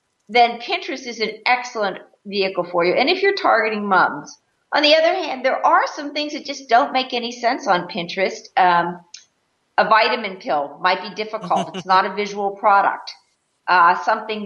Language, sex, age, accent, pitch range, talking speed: English, female, 50-69, American, 180-225 Hz, 180 wpm